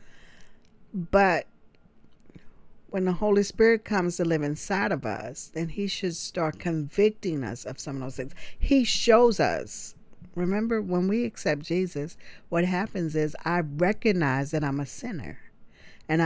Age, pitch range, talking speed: 50-69, 150-195 Hz, 150 wpm